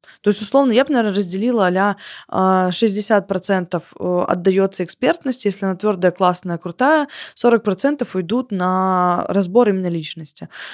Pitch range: 180-220 Hz